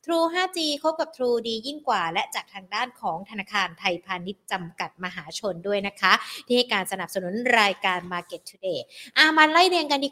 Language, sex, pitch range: Thai, female, 200-255 Hz